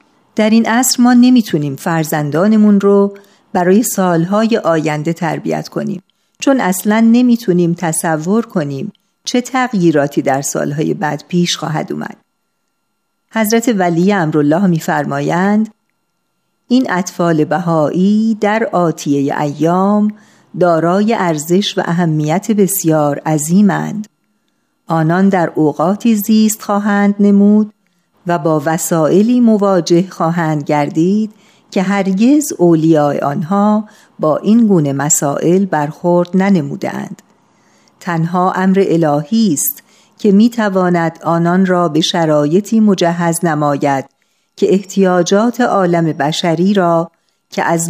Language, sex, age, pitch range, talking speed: Persian, female, 50-69, 165-210 Hz, 105 wpm